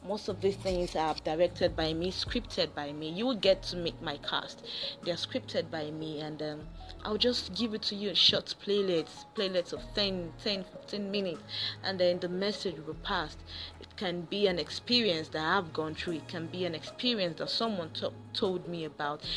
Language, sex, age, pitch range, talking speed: English, female, 30-49, 160-205 Hz, 200 wpm